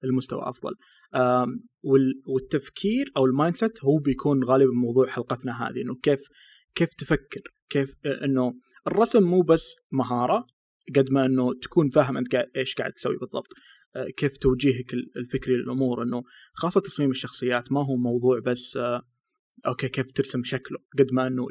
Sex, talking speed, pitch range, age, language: male, 140 wpm, 125-150 Hz, 20-39, Arabic